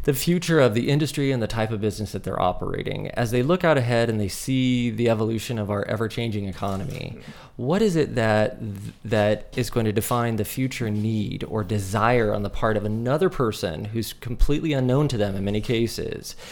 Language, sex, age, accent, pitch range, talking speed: English, male, 20-39, American, 105-140 Hz, 205 wpm